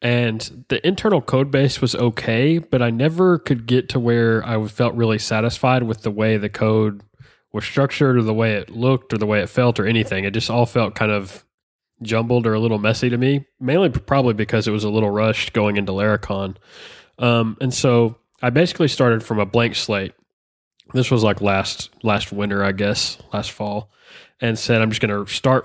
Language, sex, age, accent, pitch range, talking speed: English, male, 20-39, American, 105-125 Hz, 205 wpm